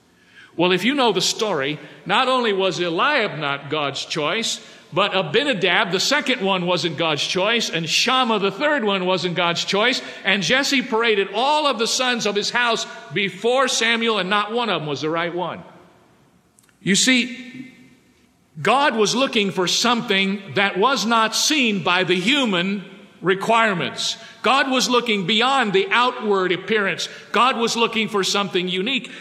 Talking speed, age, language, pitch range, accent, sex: 160 wpm, 50-69, English, 180-230 Hz, American, male